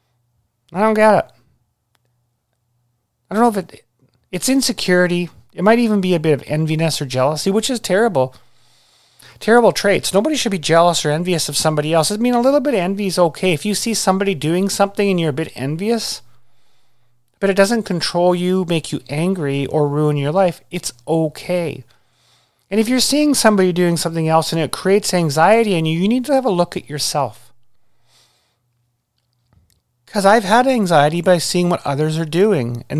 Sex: male